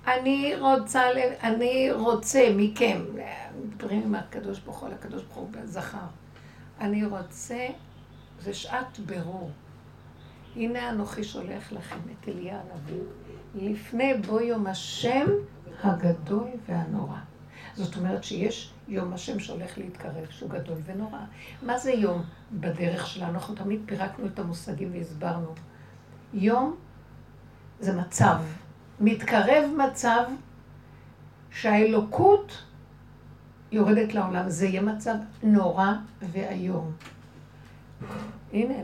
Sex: female